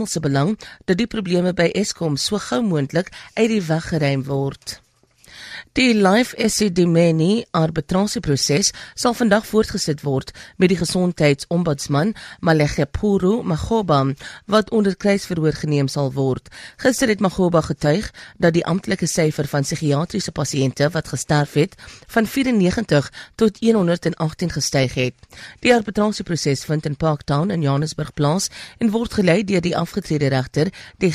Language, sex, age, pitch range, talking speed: English, female, 40-59, 150-205 Hz, 130 wpm